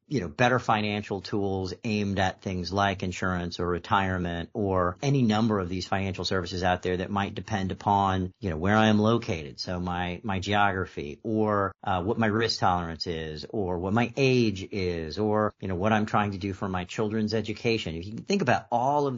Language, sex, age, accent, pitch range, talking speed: English, male, 40-59, American, 90-105 Hz, 205 wpm